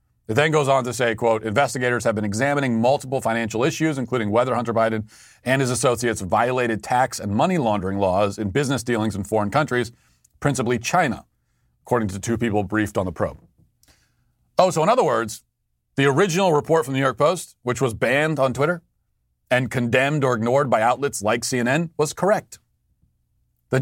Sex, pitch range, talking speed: male, 110-155 Hz, 180 wpm